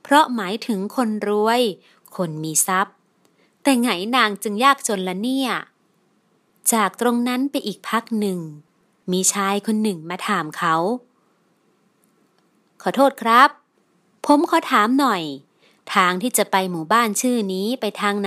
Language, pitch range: Thai, 195-255 Hz